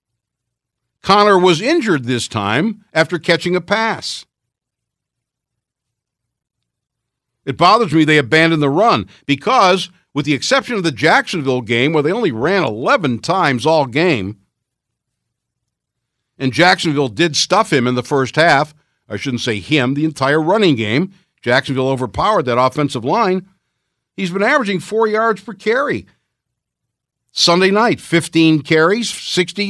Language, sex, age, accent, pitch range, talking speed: English, male, 60-79, American, 125-180 Hz, 135 wpm